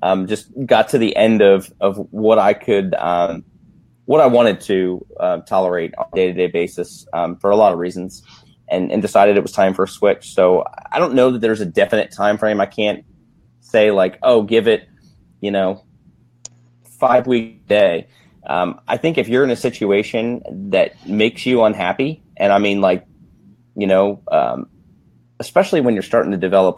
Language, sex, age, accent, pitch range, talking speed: English, male, 30-49, American, 95-115 Hz, 195 wpm